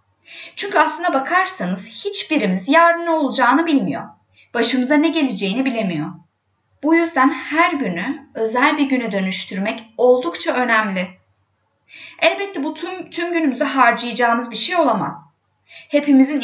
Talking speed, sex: 115 wpm, female